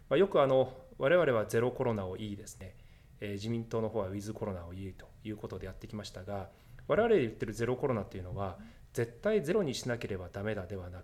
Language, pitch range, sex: Japanese, 105-135 Hz, male